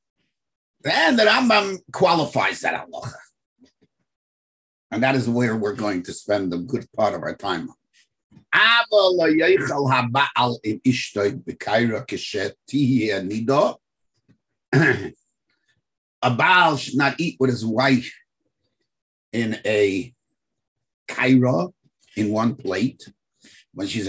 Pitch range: 115-170 Hz